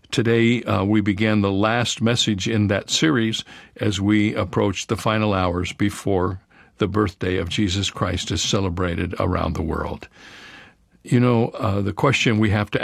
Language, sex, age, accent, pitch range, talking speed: English, male, 60-79, American, 95-120 Hz, 165 wpm